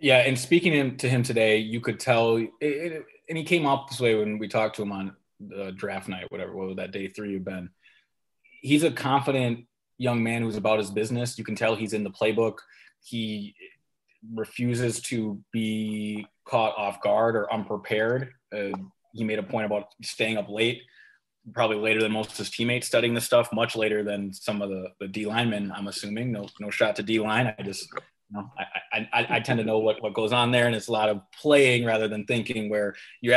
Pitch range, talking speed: 105-120 Hz, 210 wpm